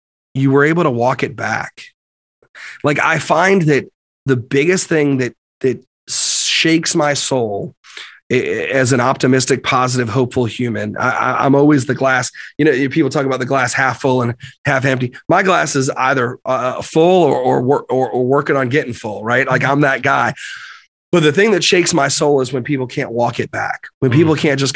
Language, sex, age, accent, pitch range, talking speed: English, male, 30-49, American, 120-145 Hz, 190 wpm